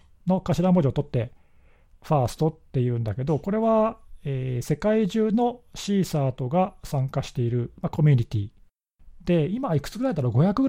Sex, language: male, Japanese